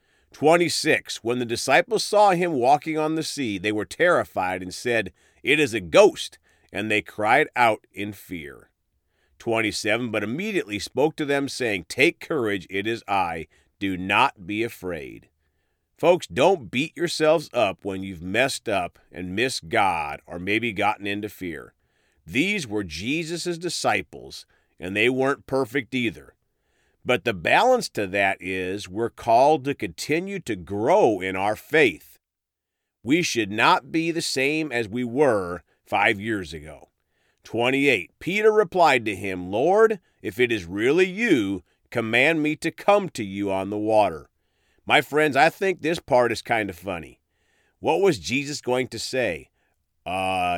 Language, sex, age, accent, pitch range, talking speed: English, male, 40-59, American, 100-155 Hz, 155 wpm